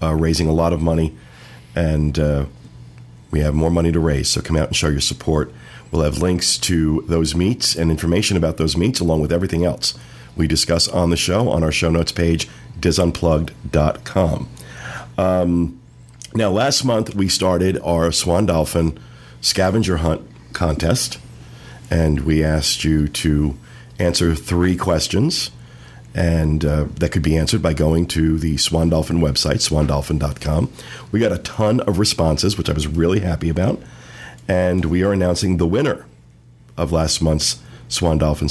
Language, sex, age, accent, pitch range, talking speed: English, male, 50-69, American, 75-90 Hz, 160 wpm